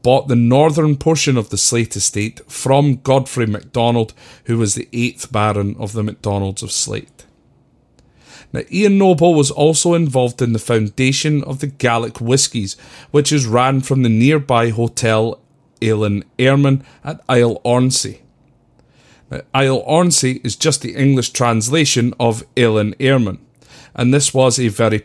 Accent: British